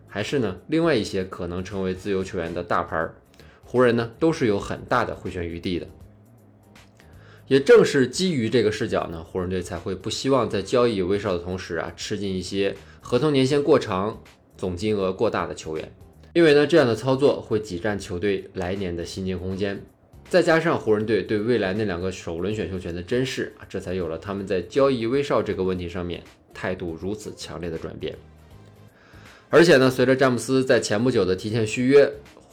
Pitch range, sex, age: 90-120 Hz, male, 20-39